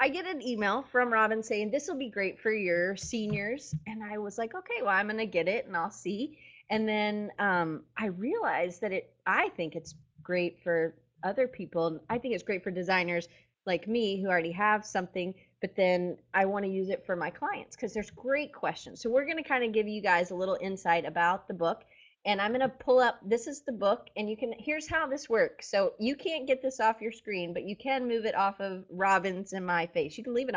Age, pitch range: 20-39, 175-225 Hz